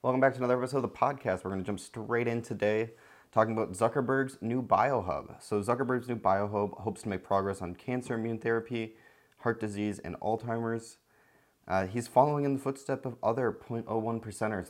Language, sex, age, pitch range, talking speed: English, male, 20-39, 95-115 Hz, 190 wpm